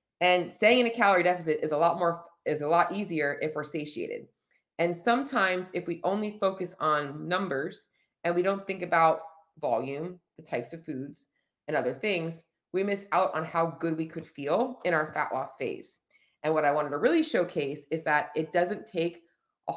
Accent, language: American, English